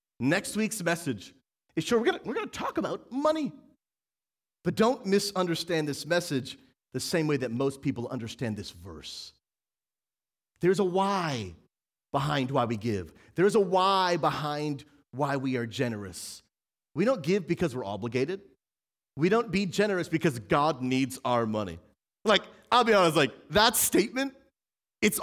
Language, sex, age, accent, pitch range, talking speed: English, male, 40-59, American, 130-195 Hz, 155 wpm